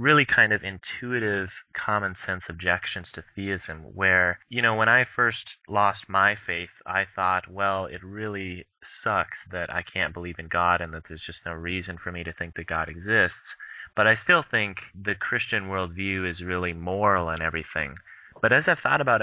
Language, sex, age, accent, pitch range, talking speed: English, male, 30-49, American, 90-105 Hz, 185 wpm